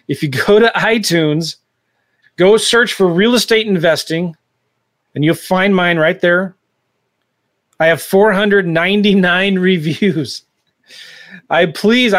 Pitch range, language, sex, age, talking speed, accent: 145-200 Hz, English, male, 30-49, 115 wpm, American